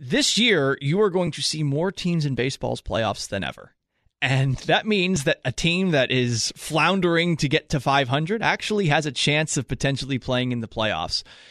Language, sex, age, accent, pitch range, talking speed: English, male, 30-49, American, 125-160 Hz, 195 wpm